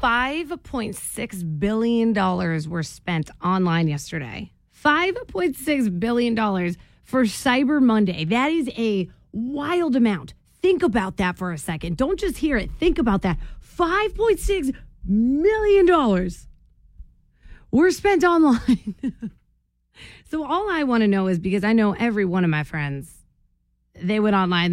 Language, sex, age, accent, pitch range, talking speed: English, female, 30-49, American, 170-240 Hz, 125 wpm